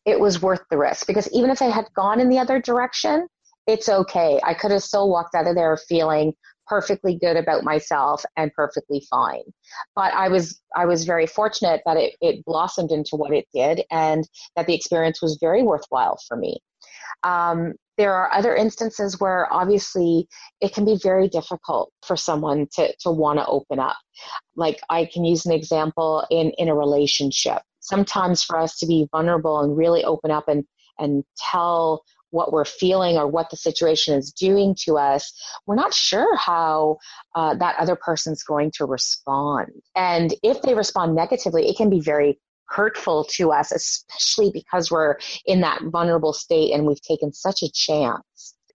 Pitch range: 155-195 Hz